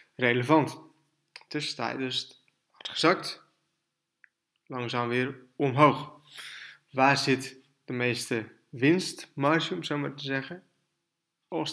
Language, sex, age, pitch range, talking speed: Dutch, male, 20-39, 125-145 Hz, 100 wpm